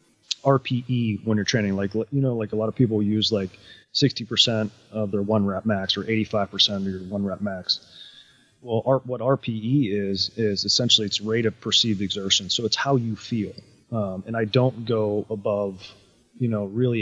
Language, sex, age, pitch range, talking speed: English, male, 30-49, 105-120 Hz, 185 wpm